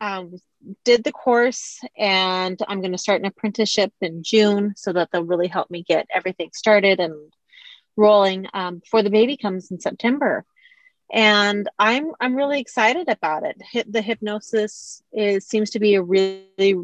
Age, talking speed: 30-49, 165 wpm